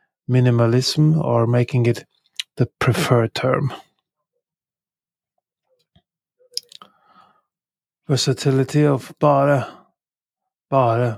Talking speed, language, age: 60 wpm, English, 30-49